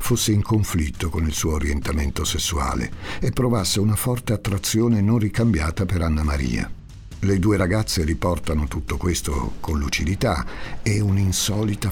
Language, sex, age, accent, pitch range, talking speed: Italian, male, 50-69, native, 80-105 Hz, 140 wpm